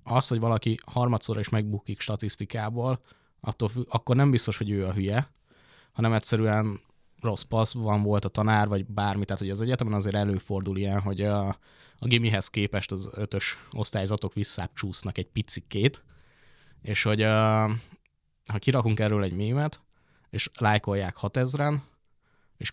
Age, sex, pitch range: 20-39, male, 100-115 Hz